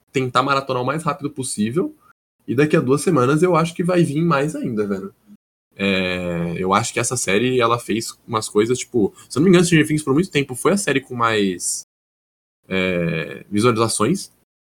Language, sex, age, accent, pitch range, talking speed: Portuguese, male, 10-29, Brazilian, 95-150 Hz, 195 wpm